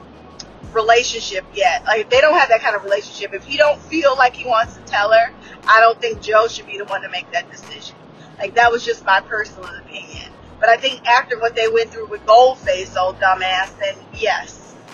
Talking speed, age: 215 wpm, 20-39